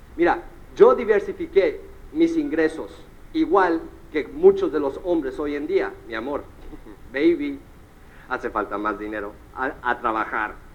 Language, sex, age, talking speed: Portuguese, male, 50-69, 135 wpm